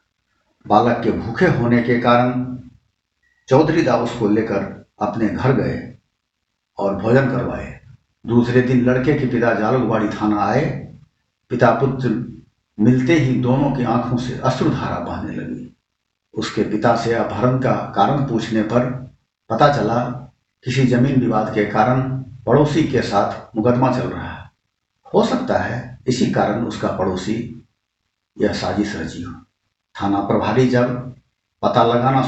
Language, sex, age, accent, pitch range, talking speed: Hindi, male, 60-79, native, 110-130 Hz, 130 wpm